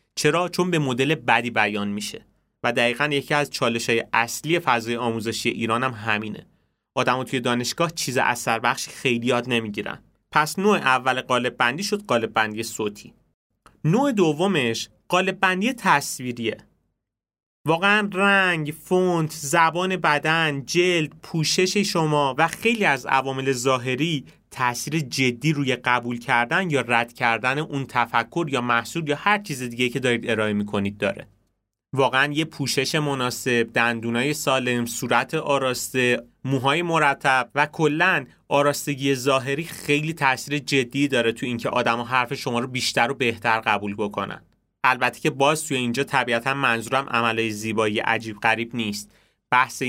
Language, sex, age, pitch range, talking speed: Persian, male, 30-49, 115-150 Hz, 135 wpm